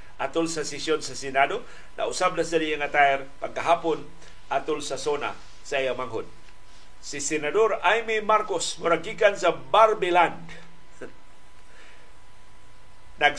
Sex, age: male, 50-69